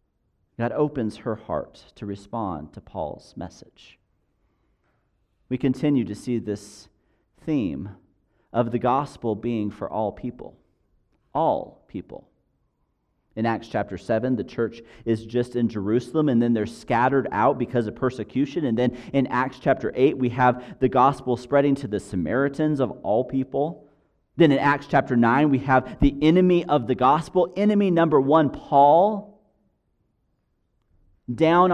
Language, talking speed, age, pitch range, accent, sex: English, 145 wpm, 40-59, 120-160 Hz, American, male